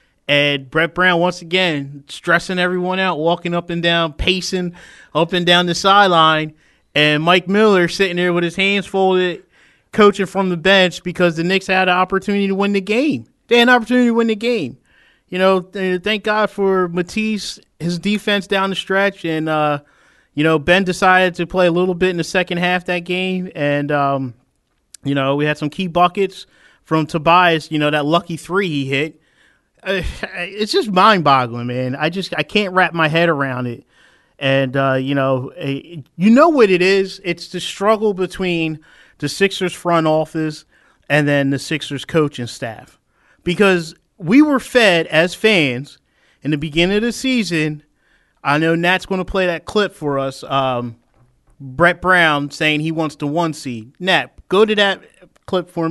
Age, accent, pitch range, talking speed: 20-39, American, 150-190 Hz, 185 wpm